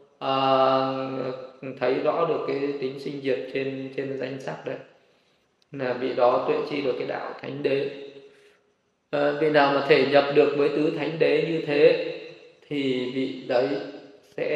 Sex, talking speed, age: male, 165 wpm, 20-39